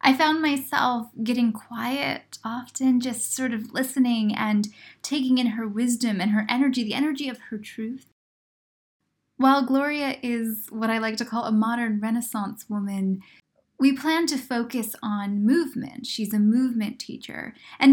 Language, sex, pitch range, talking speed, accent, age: English, female, 215-260 Hz, 155 wpm, American, 10-29